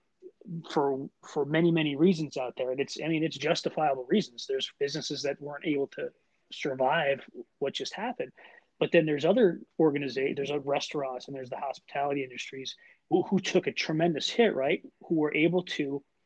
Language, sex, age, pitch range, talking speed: English, male, 30-49, 135-170 Hz, 175 wpm